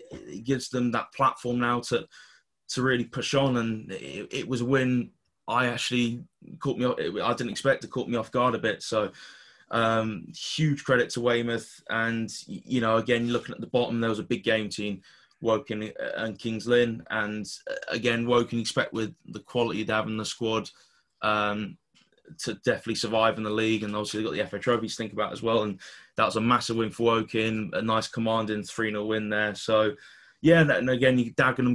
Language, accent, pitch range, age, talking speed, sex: English, British, 110-125 Hz, 20-39, 200 wpm, male